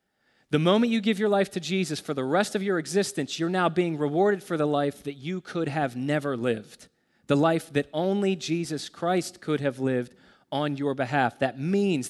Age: 30-49